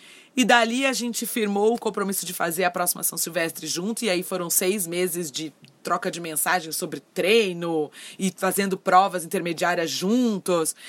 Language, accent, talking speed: Portuguese, Brazilian, 165 wpm